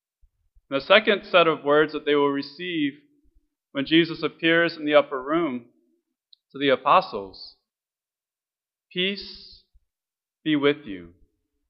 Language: English